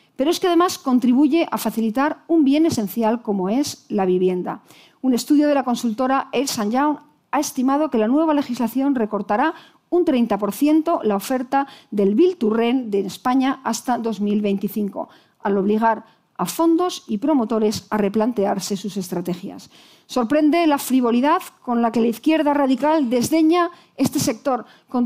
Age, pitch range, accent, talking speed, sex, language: 40-59, 215-300 Hz, Spanish, 150 wpm, female, Spanish